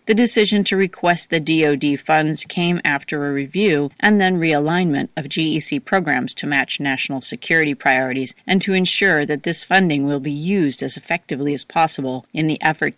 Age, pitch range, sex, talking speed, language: 40-59, 145-180 Hz, female, 175 wpm, English